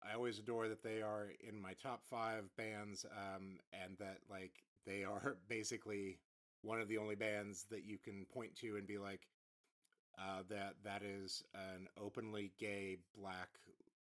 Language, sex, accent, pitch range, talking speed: English, male, American, 95-115 Hz, 165 wpm